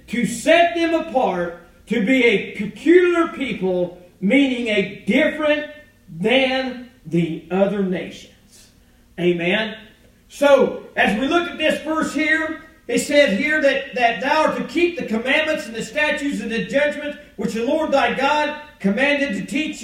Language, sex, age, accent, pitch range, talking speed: English, male, 50-69, American, 230-315 Hz, 150 wpm